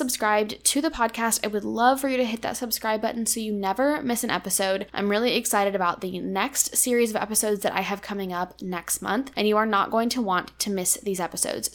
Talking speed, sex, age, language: 240 wpm, female, 10-29, English